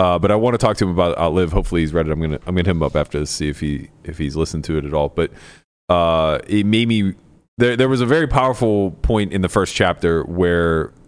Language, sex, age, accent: English, male, 30-49, American